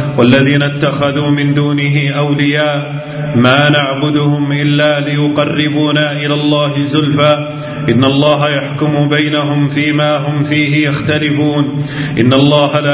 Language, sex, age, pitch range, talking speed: Arabic, male, 40-59, 135-145 Hz, 105 wpm